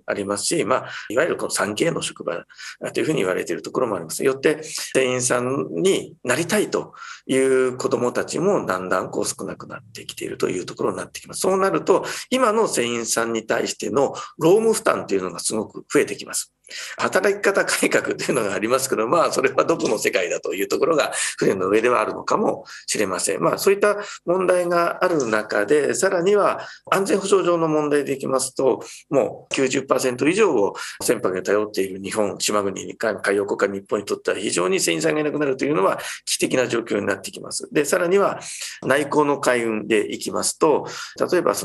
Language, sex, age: Japanese, male, 40-59